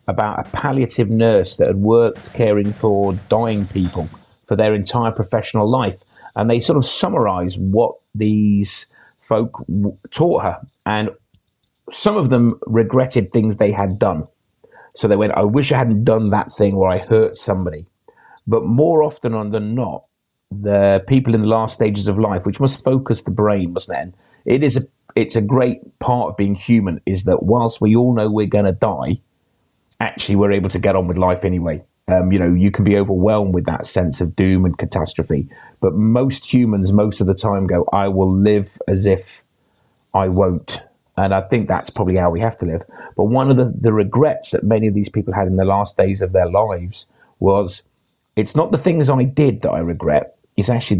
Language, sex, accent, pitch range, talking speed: English, male, British, 95-115 Hz, 195 wpm